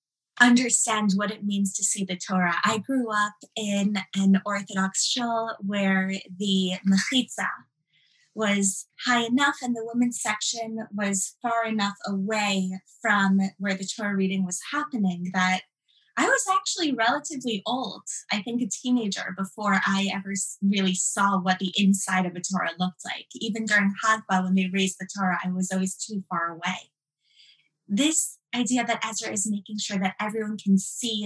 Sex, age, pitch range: female, 20-39, 185-220 Hz